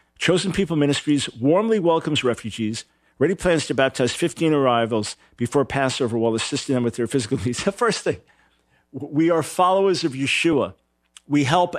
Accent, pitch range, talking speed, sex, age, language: American, 135-190 Hz, 160 wpm, male, 50-69, English